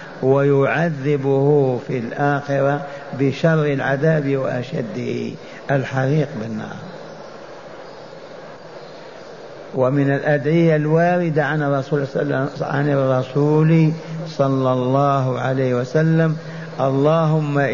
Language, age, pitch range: Arabic, 50-69, 135-160 Hz